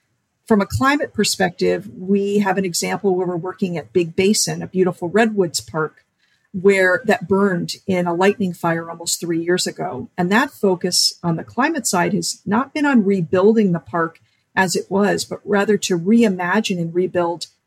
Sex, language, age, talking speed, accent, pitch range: female, English, 50-69, 175 wpm, American, 175-215 Hz